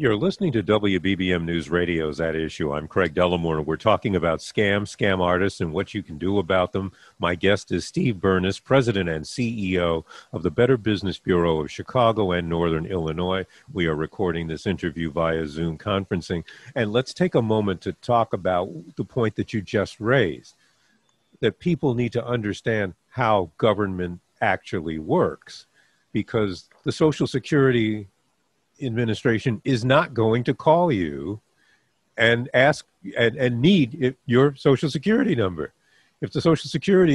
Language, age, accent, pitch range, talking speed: English, 50-69, American, 90-130 Hz, 155 wpm